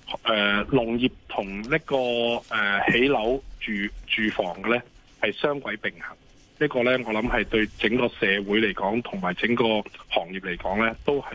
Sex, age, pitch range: male, 20-39, 105-125 Hz